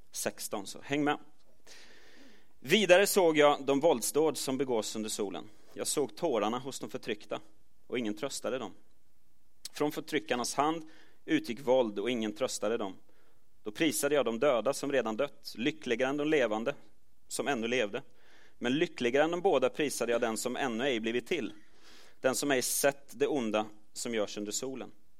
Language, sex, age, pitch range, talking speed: Swedish, male, 30-49, 110-150 Hz, 165 wpm